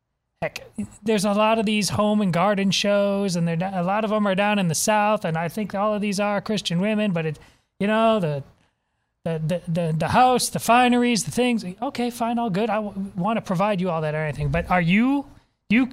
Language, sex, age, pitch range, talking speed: English, male, 30-49, 170-220 Hz, 235 wpm